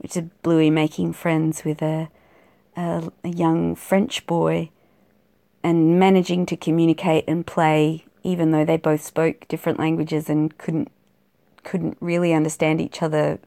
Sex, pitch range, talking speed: female, 150-170 Hz, 140 wpm